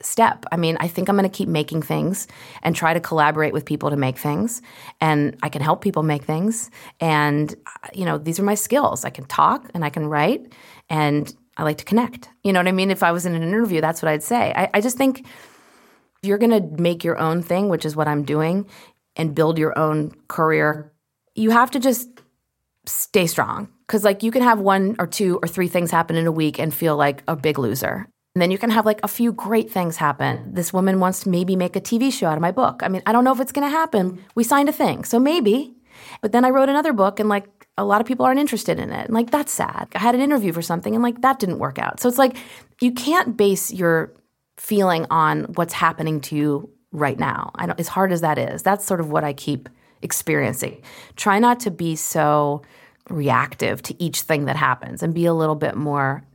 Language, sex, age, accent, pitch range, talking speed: English, female, 30-49, American, 155-225 Hz, 245 wpm